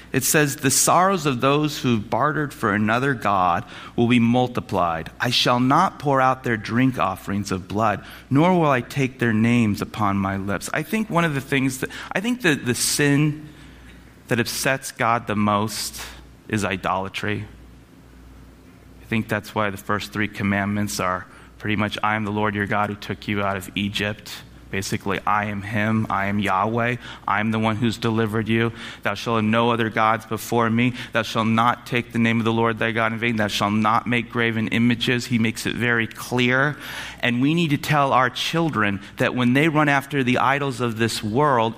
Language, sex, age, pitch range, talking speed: English, male, 30-49, 105-125 Hz, 200 wpm